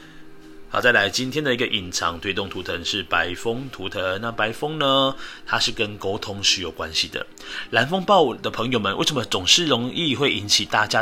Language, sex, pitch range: Chinese, male, 95-140 Hz